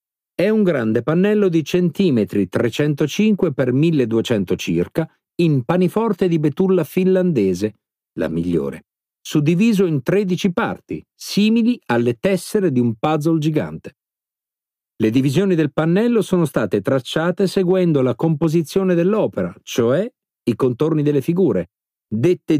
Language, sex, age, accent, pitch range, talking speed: Italian, male, 50-69, native, 130-190 Hz, 120 wpm